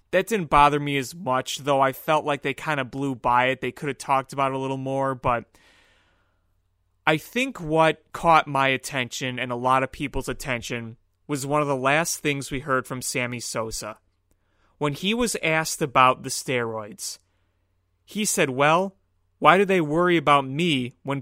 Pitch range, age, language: 95-155 Hz, 30-49, English